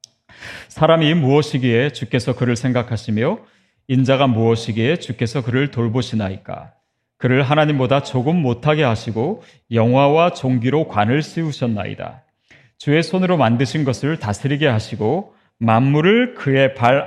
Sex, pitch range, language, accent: male, 115-150 Hz, Korean, native